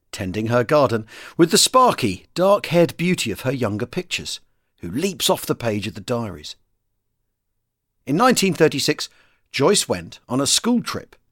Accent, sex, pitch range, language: British, male, 115-180 Hz, English